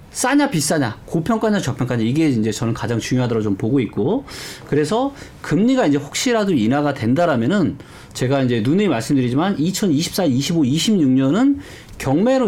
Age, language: 40-59, Korean